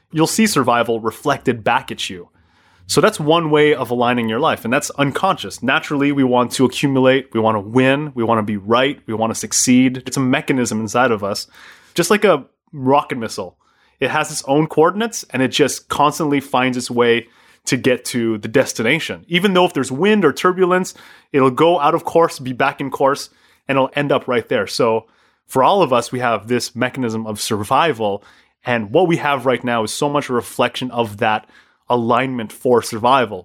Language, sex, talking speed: English, male, 195 wpm